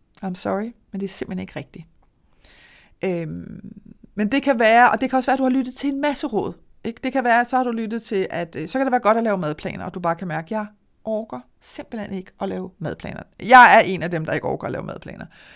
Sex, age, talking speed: female, 30-49, 265 wpm